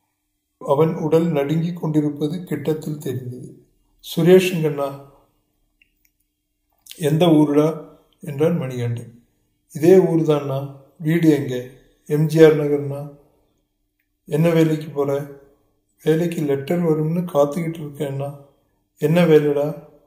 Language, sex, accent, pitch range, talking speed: Tamil, male, native, 145-160 Hz, 85 wpm